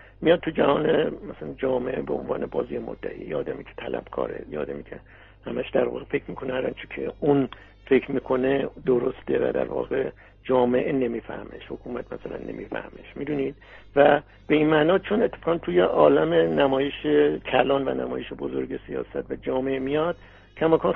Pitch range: 125-160 Hz